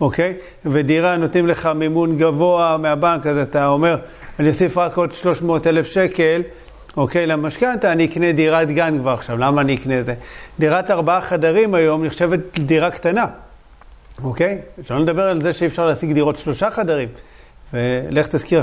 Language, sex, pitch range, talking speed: Hebrew, male, 140-175 Hz, 160 wpm